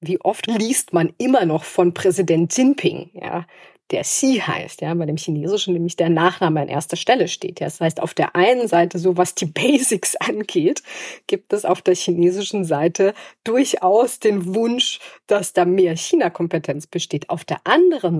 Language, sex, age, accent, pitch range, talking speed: German, female, 30-49, German, 165-205 Hz, 175 wpm